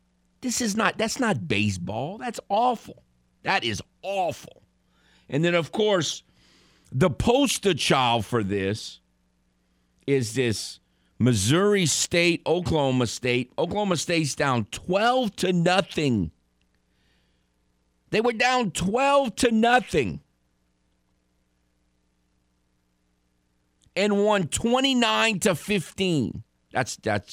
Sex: male